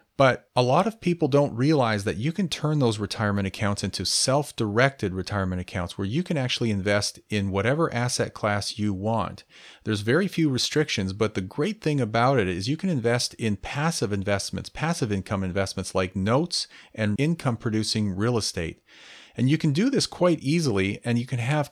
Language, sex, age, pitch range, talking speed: English, male, 40-59, 100-135 Hz, 180 wpm